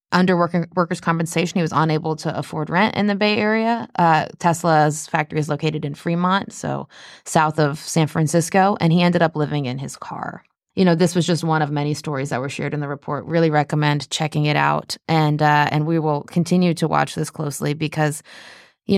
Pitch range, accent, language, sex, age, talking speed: 155-185 Hz, American, English, female, 20-39, 200 wpm